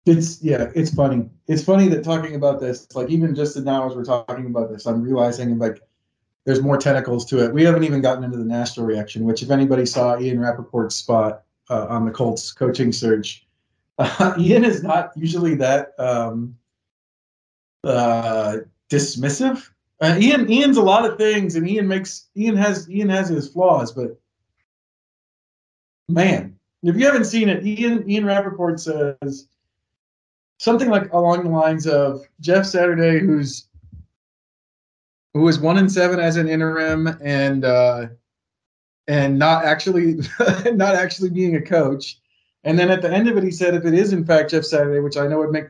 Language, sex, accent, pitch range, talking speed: English, male, American, 120-175 Hz, 175 wpm